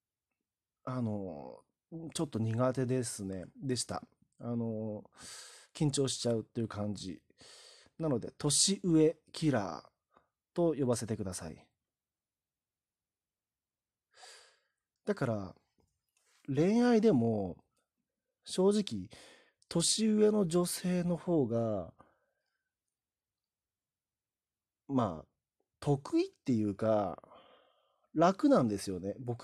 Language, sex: Japanese, male